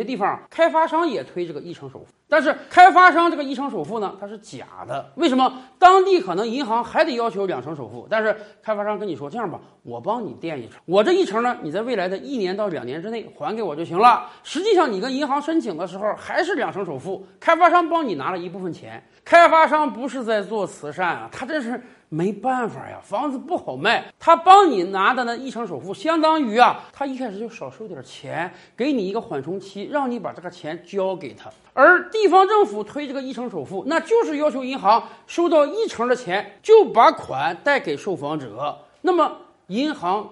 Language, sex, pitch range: Chinese, male, 195-315 Hz